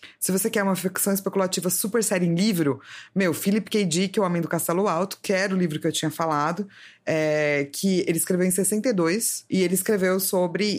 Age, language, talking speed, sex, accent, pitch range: 20-39, Portuguese, 210 wpm, female, Brazilian, 160-200 Hz